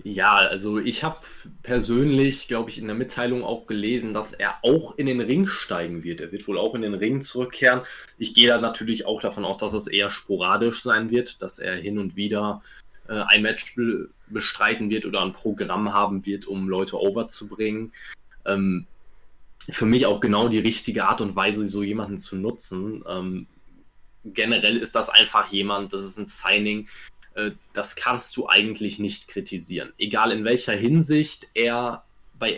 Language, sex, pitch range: German, male, 105-120 Hz